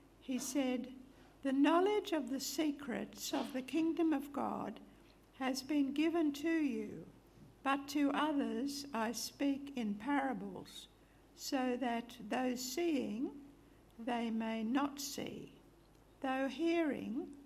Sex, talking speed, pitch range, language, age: female, 115 wpm, 235-290 Hz, English, 60-79